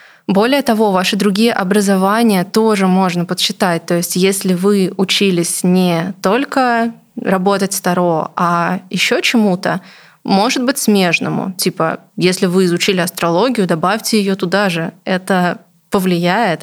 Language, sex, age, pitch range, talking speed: Russian, female, 20-39, 180-215 Hz, 125 wpm